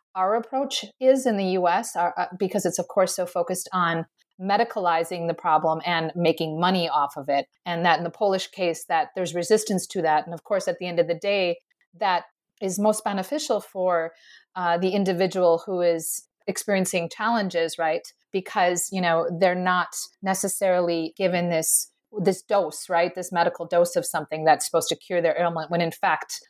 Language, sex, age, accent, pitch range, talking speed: English, female, 30-49, American, 175-215 Hz, 185 wpm